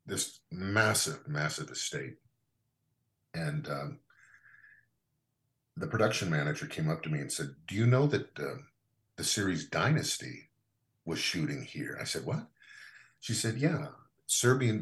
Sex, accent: male, American